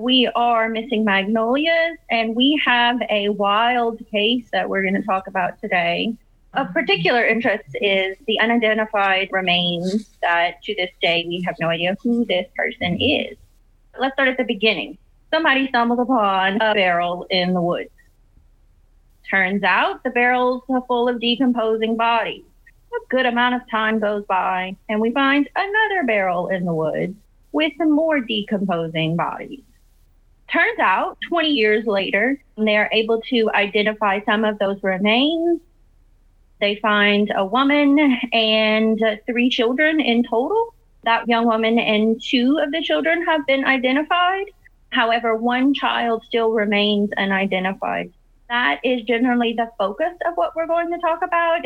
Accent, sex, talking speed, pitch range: American, female, 150 wpm, 205-260 Hz